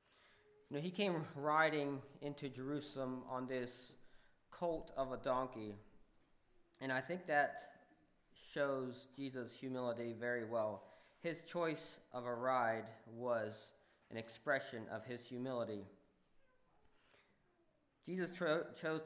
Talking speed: 105 wpm